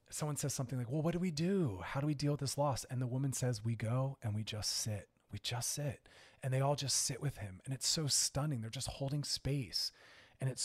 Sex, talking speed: male, 260 wpm